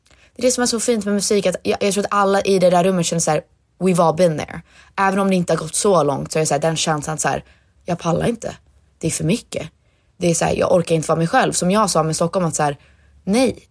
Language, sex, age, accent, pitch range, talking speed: Swedish, female, 20-39, native, 165-210 Hz, 290 wpm